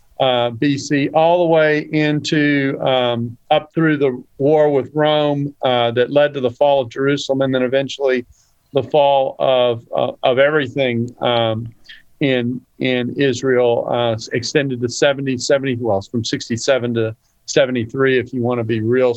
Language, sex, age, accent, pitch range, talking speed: English, male, 50-69, American, 120-155 Hz, 160 wpm